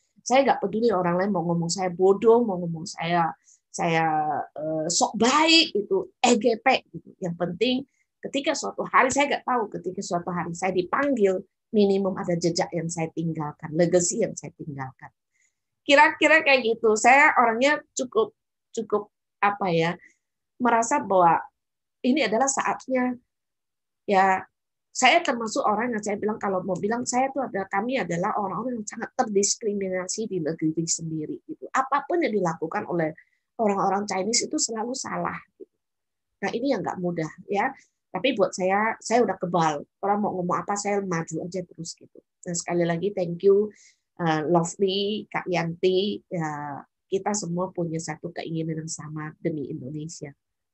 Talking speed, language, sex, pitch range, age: 150 wpm, Indonesian, female, 170-235 Hz, 20-39